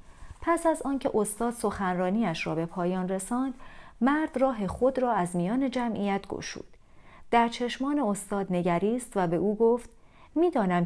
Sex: female